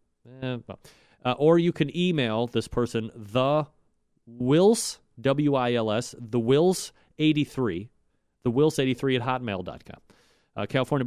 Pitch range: 110-145 Hz